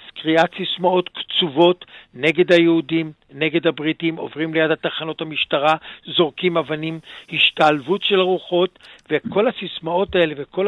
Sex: male